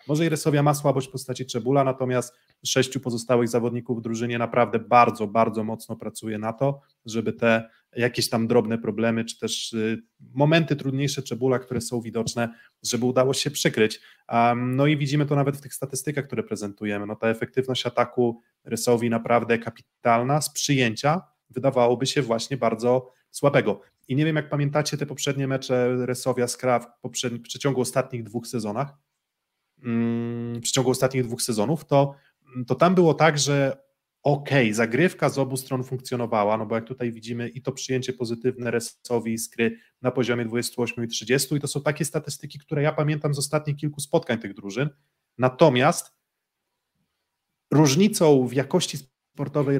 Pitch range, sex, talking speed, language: 120-140 Hz, male, 160 wpm, Polish